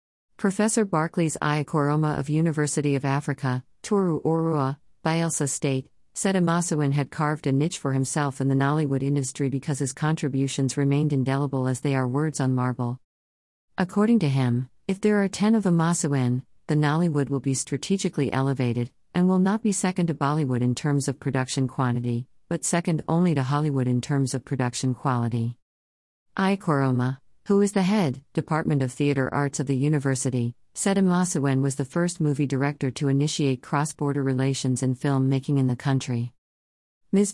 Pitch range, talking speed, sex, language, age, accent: 130-155 Hz, 160 wpm, female, English, 50-69, American